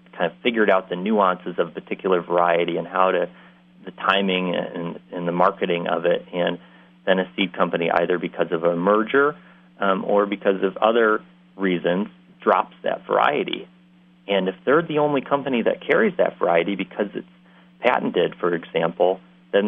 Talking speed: 170 wpm